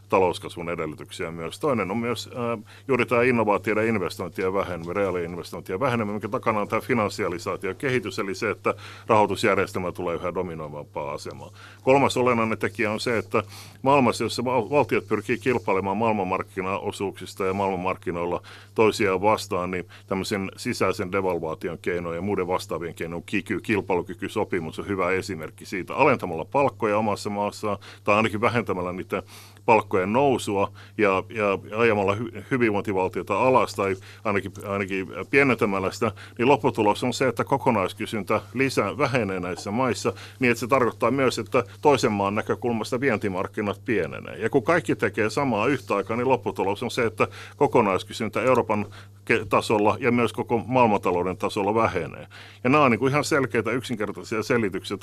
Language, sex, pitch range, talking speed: Finnish, male, 100-120 Hz, 145 wpm